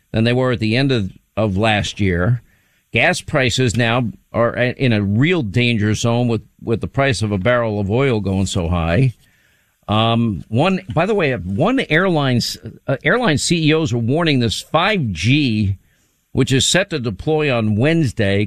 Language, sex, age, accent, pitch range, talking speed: English, male, 50-69, American, 115-140 Hz, 165 wpm